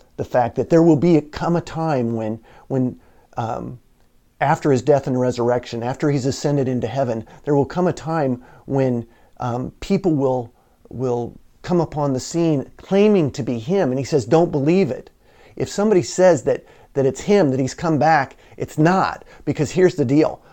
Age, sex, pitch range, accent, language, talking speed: 40-59, male, 125-170 Hz, American, English, 185 wpm